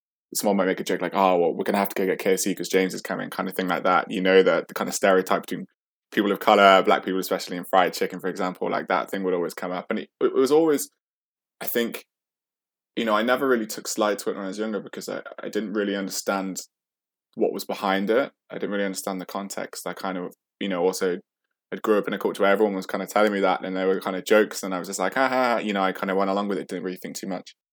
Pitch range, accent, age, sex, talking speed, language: 95-110 Hz, British, 20-39, male, 285 wpm, English